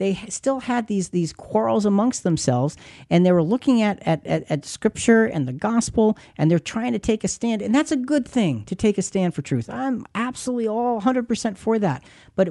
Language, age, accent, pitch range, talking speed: English, 50-69, American, 150-230 Hz, 210 wpm